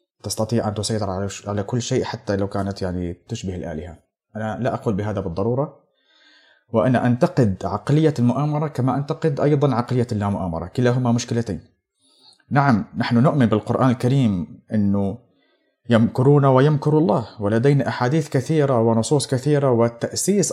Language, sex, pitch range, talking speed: Arabic, male, 110-140 Hz, 130 wpm